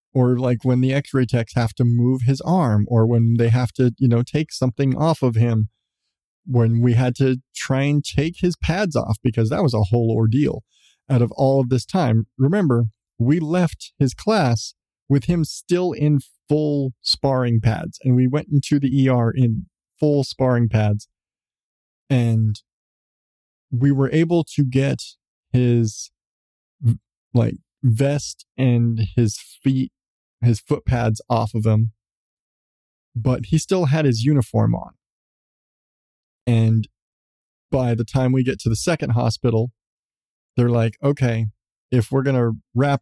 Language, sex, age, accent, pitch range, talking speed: English, male, 20-39, American, 115-135 Hz, 155 wpm